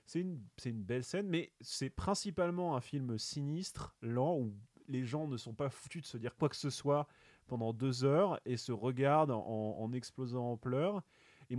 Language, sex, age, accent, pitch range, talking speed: French, male, 30-49, French, 130-165 Hz, 200 wpm